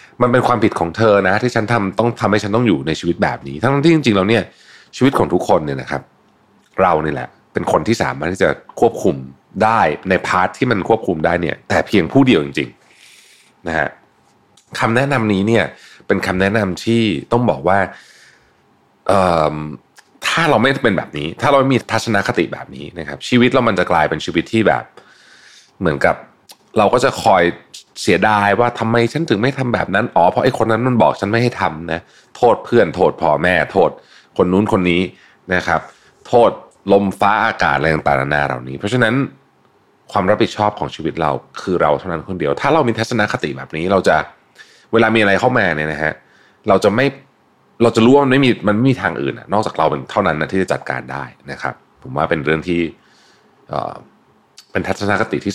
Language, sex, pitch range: Thai, male, 80-115 Hz